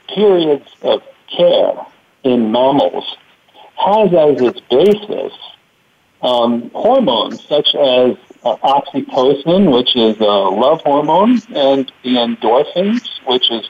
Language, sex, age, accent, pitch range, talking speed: English, male, 60-79, American, 125-210 Hz, 110 wpm